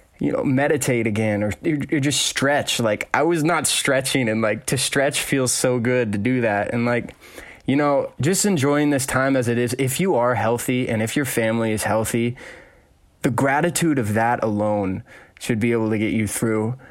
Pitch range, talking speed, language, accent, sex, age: 110-135 Hz, 200 wpm, English, American, male, 20-39